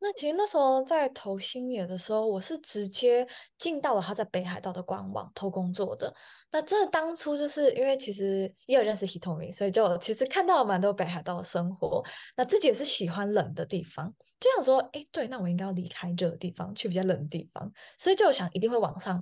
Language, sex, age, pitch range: Chinese, female, 10-29, 190-315 Hz